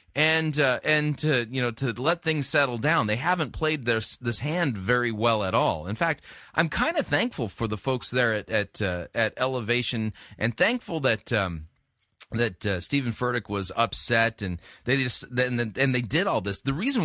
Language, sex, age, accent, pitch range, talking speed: English, male, 30-49, American, 115-175 Hz, 205 wpm